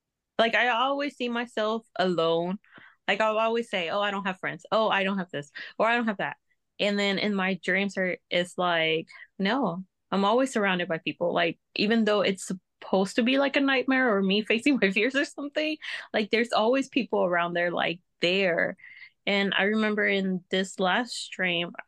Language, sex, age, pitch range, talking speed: English, female, 20-39, 195-265 Hz, 195 wpm